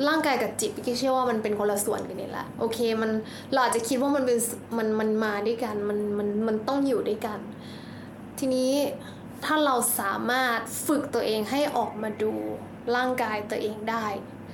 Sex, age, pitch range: female, 10-29, 220-260 Hz